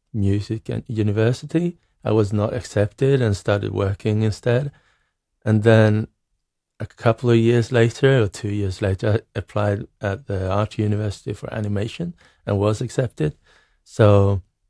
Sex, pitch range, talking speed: male, 100-115 Hz, 140 wpm